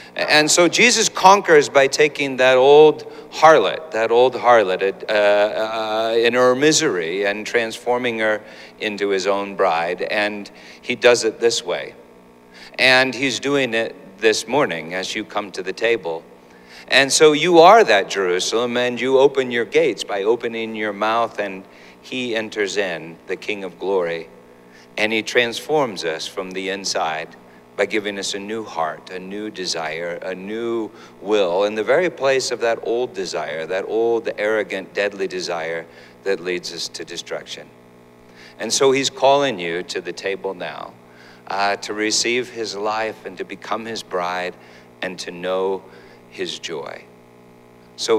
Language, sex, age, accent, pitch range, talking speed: English, male, 50-69, American, 80-125 Hz, 160 wpm